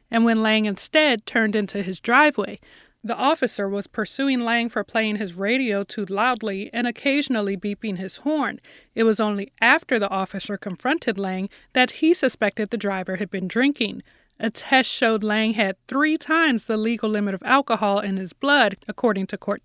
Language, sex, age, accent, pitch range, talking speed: English, female, 30-49, American, 205-255 Hz, 175 wpm